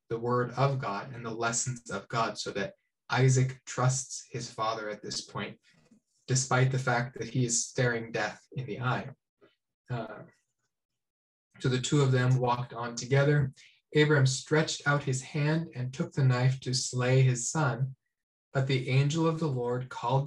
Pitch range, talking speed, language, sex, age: 120-135 Hz, 170 wpm, English, male, 20-39